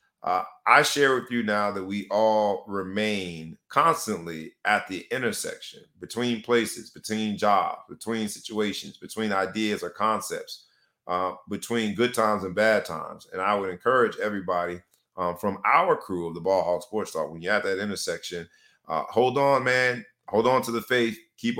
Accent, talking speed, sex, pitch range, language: American, 170 wpm, male, 100-130 Hz, English